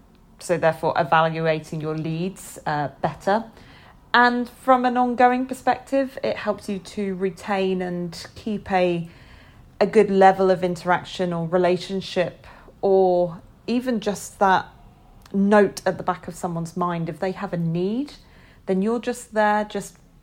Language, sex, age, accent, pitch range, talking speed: English, female, 40-59, British, 165-200 Hz, 140 wpm